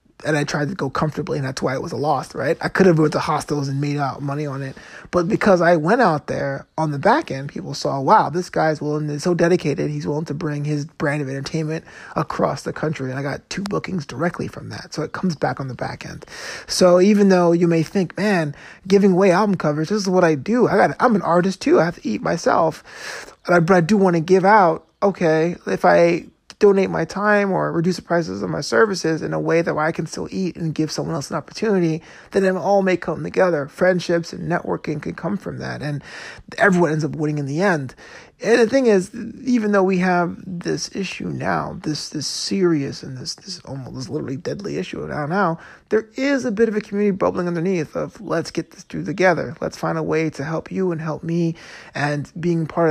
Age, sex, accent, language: 20-39, male, American, English